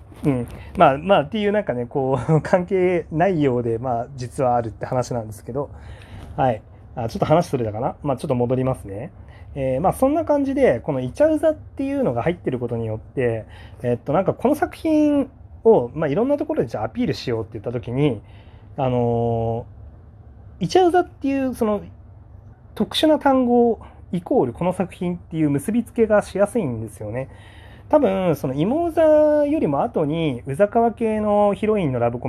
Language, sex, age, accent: Japanese, male, 30-49, native